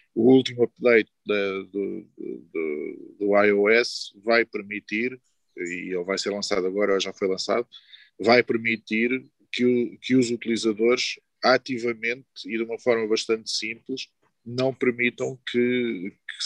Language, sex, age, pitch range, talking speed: Portuguese, male, 20-39, 105-125 Hz, 130 wpm